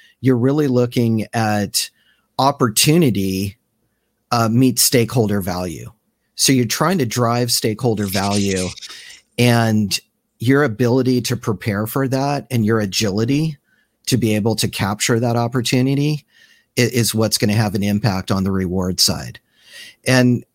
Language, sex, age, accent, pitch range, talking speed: English, male, 40-59, American, 105-125 Hz, 130 wpm